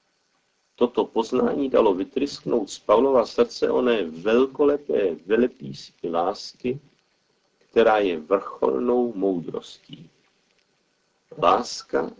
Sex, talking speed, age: male, 80 wpm, 50-69